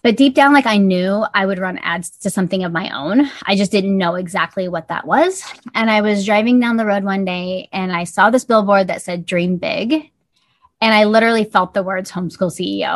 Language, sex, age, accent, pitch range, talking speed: English, female, 20-39, American, 195-255 Hz, 225 wpm